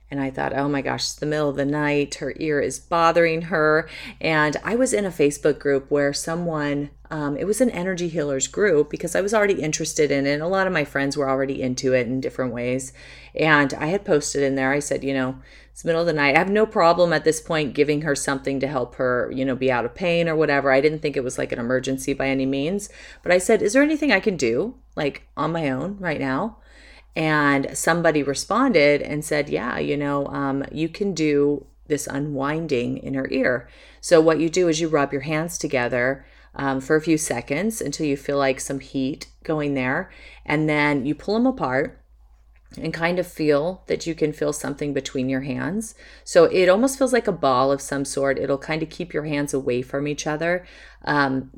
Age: 30-49